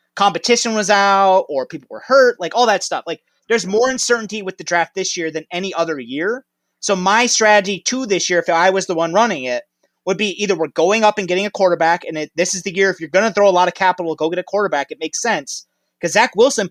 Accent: American